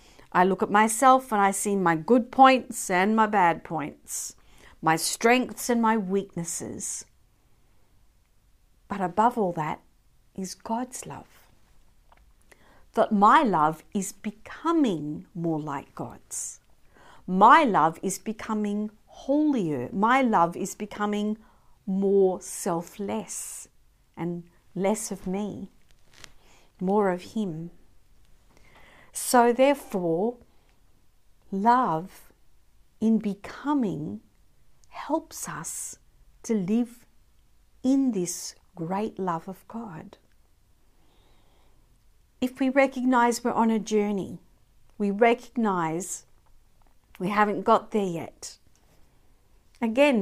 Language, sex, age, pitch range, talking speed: English, female, 50-69, 190-245 Hz, 100 wpm